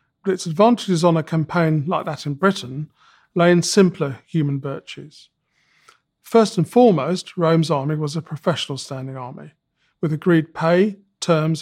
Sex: male